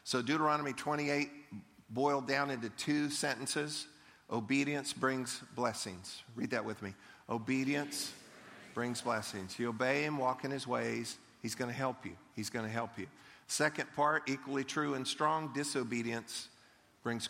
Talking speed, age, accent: 150 wpm, 50-69, American